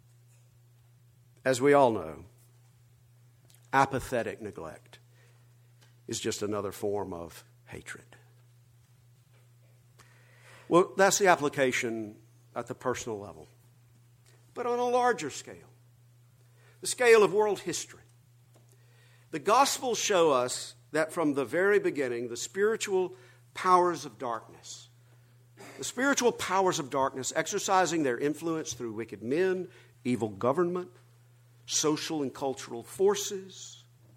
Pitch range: 120-175 Hz